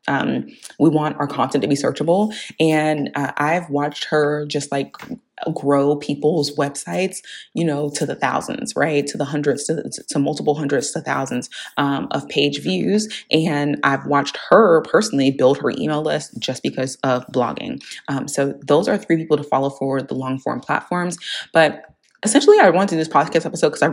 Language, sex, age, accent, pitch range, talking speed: English, female, 20-39, American, 135-160 Hz, 190 wpm